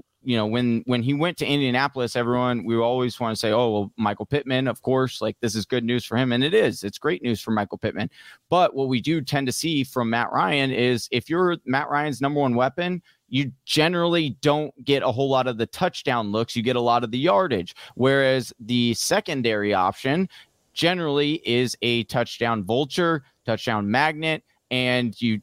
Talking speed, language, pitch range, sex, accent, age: 200 wpm, English, 110-135 Hz, male, American, 30-49